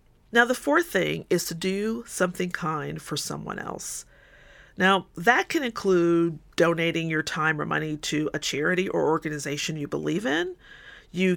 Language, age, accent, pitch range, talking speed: English, 40-59, American, 165-215 Hz, 160 wpm